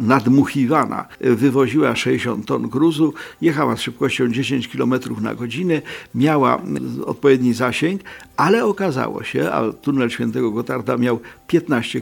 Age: 50-69